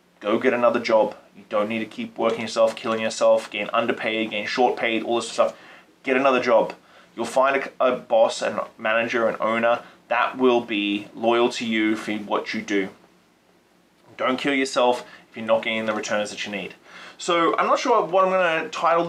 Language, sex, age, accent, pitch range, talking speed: English, male, 20-39, Australian, 110-130 Hz, 200 wpm